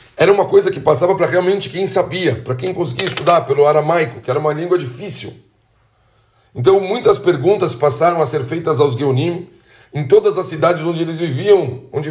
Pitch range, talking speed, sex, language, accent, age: 125-175 Hz, 185 wpm, male, Portuguese, Brazilian, 60-79